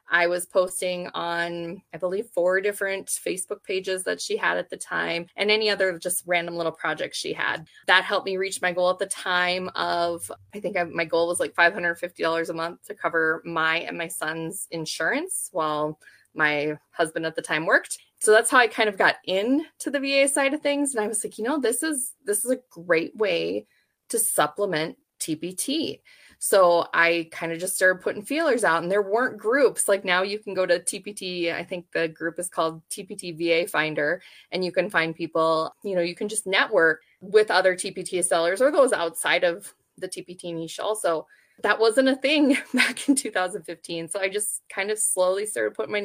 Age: 20-39